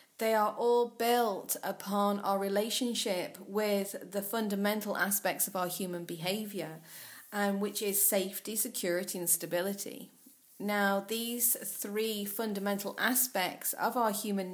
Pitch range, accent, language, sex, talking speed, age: 195-225 Hz, British, English, female, 130 wpm, 30-49